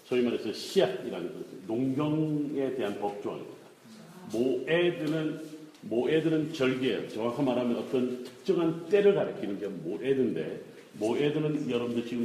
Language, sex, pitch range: Korean, male, 120-150 Hz